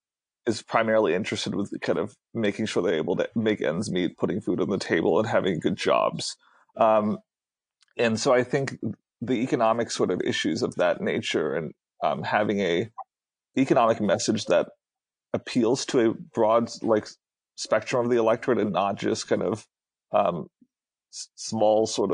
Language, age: English, 30-49